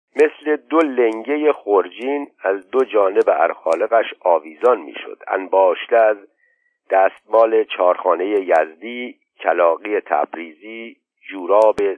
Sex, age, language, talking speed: male, 60-79, Persian, 95 wpm